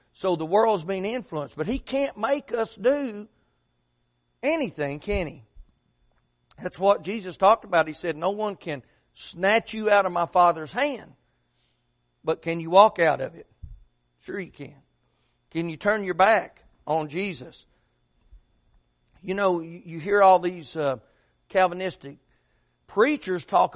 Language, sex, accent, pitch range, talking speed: English, male, American, 135-225 Hz, 145 wpm